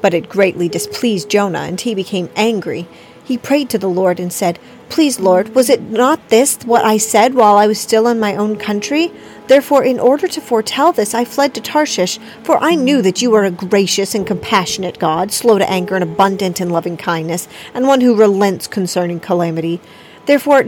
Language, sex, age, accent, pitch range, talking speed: English, female, 40-59, American, 180-235 Hz, 195 wpm